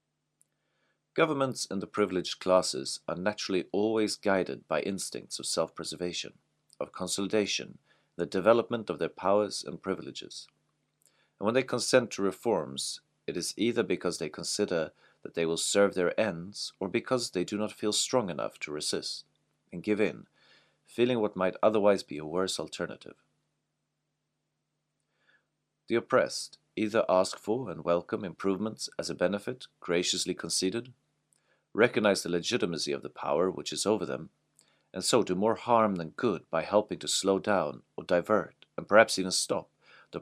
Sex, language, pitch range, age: male, English, 85-110 Hz, 40-59